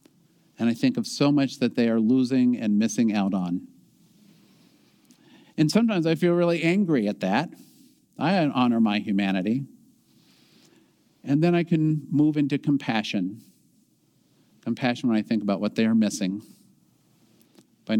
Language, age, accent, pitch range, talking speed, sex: English, 50-69, American, 105-170 Hz, 145 wpm, male